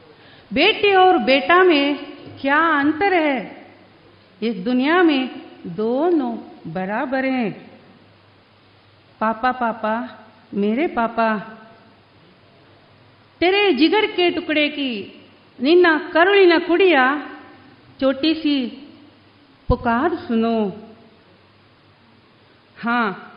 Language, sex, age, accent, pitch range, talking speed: Kannada, female, 50-69, native, 230-320 Hz, 80 wpm